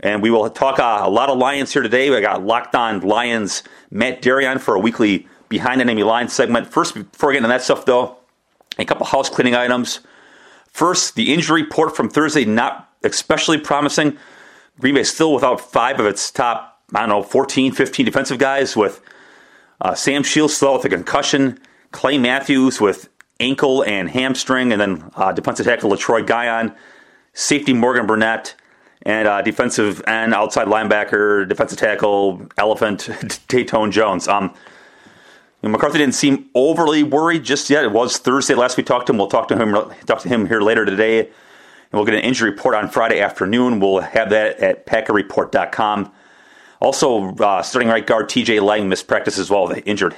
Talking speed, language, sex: 180 wpm, English, male